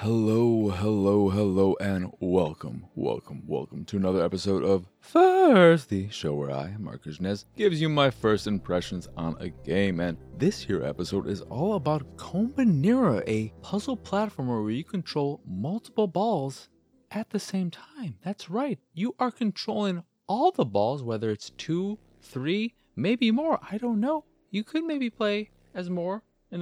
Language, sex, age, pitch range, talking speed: English, male, 30-49, 135-220 Hz, 160 wpm